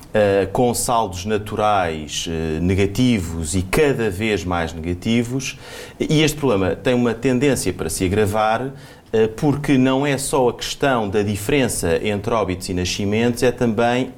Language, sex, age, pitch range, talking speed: Portuguese, male, 30-49, 95-125 Hz, 135 wpm